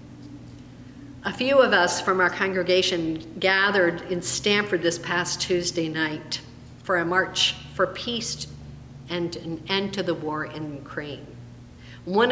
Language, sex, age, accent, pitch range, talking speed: English, female, 50-69, American, 120-205 Hz, 135 wpm